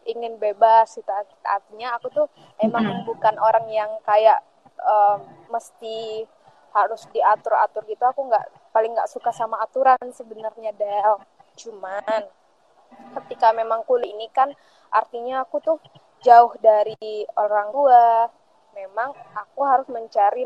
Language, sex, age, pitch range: Indonesian, female, 20-39, 215-260 Hz